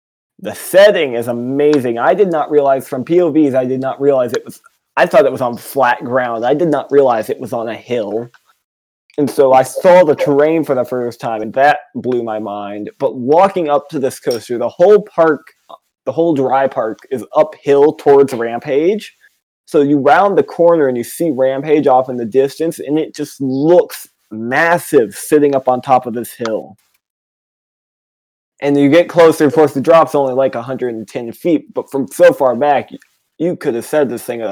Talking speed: 195 wpm